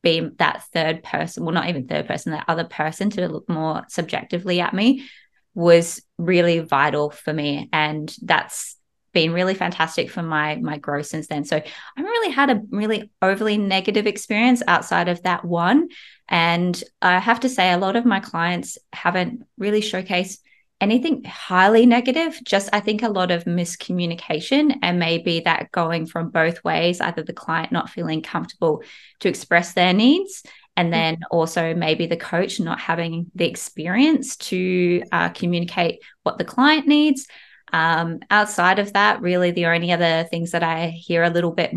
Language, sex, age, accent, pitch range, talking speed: English, female, 20-39, Australian, 165-210 Hz, 170 wpm